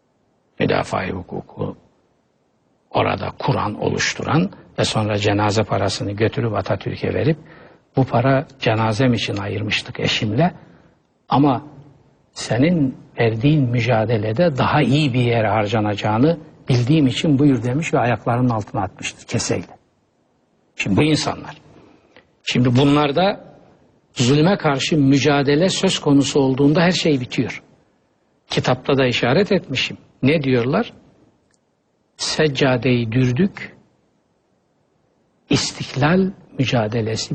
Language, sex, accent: Turkish, male, native